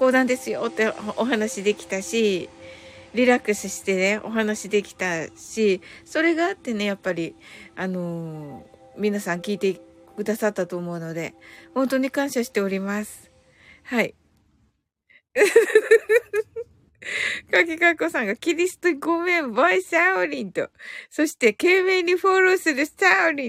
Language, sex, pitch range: Japanese, female, 205-330 Hz